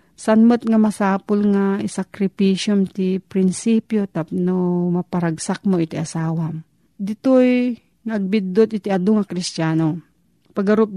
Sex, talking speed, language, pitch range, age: female, 110 wpm, Filipino, 175-210 Hz, 40-59